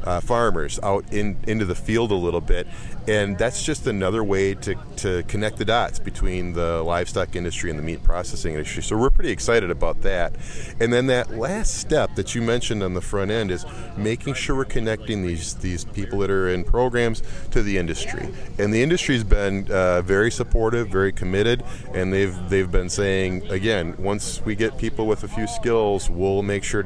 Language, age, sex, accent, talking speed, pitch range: English, 30-49, male, American, 200 wpm, 95-115 Hz